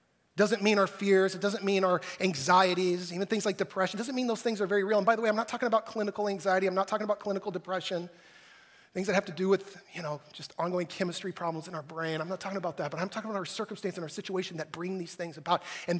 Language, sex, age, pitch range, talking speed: English, male, 30-49, 155-200 Hz, 270 wpm